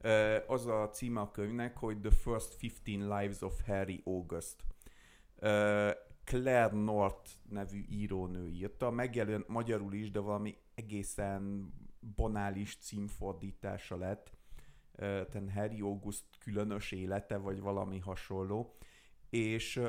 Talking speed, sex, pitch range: 105 wpm, male, 100-120 Hz